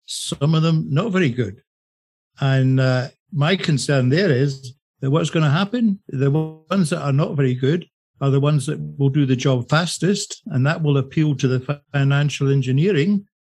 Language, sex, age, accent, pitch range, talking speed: English, male, 60-79, British, 130-155 Hz, 185 wpm